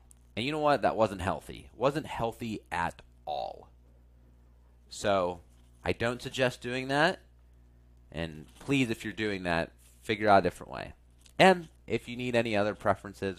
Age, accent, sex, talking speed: 30-49, American, male, 155 wpm